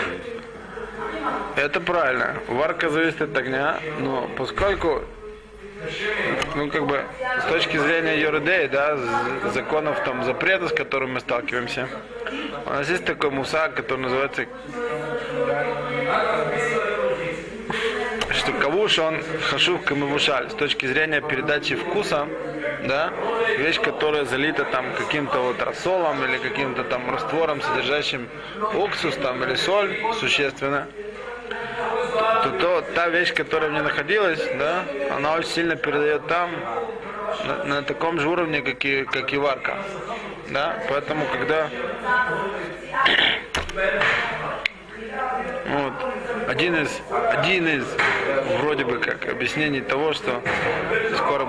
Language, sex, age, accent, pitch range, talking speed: Russian, male, 20-39, native, 145-230 Hz, 115 wpm